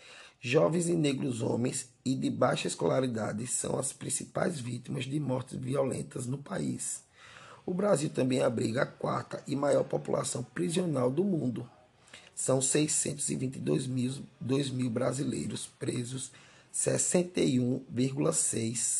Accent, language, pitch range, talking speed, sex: Brazilian, Portuguese, 115-140 Hz, 115 wpm, male